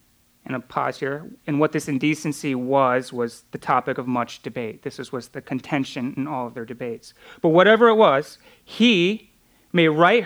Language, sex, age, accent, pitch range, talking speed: English, male, 30-49, American, 125-160 Hz, 180 wpm